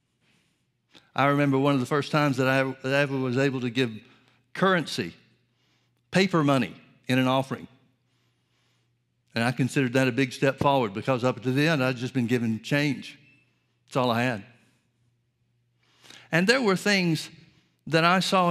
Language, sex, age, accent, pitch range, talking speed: English, male, 60-79, American, 125-150 Hz, 160 wpm